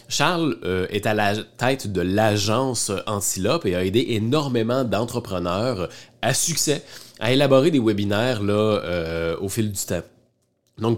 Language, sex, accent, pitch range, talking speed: French, male, Canadian, 105-130 Hz, 155 wpm